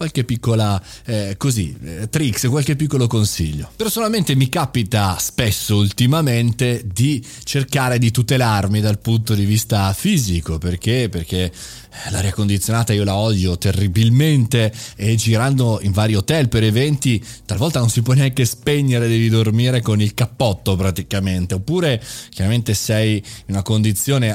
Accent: native